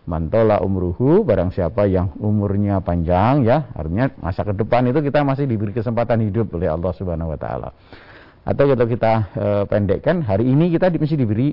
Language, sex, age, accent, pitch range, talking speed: Indonesian, male, 50-69, native, 85-115 Hz, 165 wpm